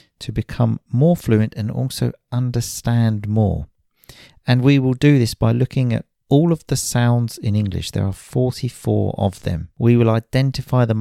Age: 40-59